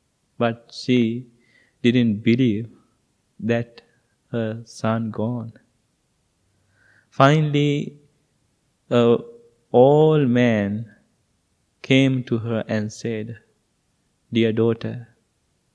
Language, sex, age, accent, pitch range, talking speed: English, male, 20-39, Indian, 115-130 Hz, 70 wpm